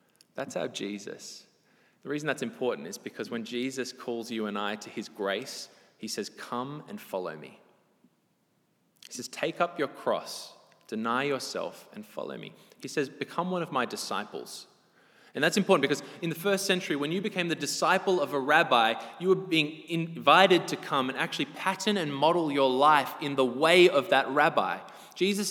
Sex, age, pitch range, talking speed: male, 20-39, 125-165 Hz, 185 wpm